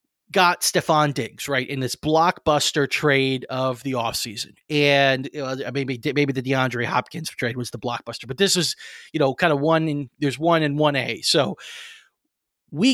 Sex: male